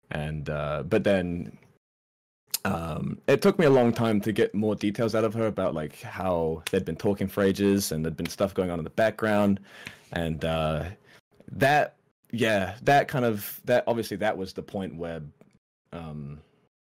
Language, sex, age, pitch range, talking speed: English, male, 20-39, 85-115 Hz, 175 wpm